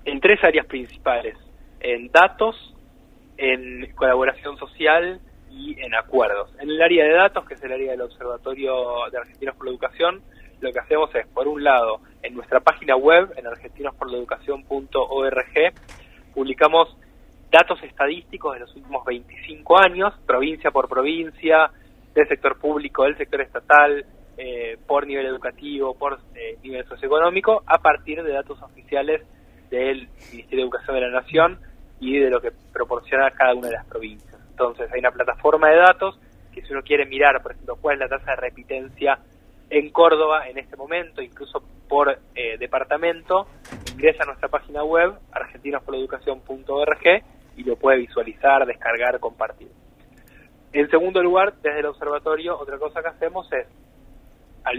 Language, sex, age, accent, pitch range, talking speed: Spanish, male, 20-39, Argentinian, 130-170 Hz, 155 wpm